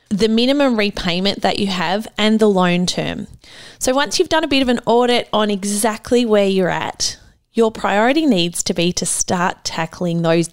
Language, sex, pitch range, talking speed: English, female, 180-230 Hz, 190 wpm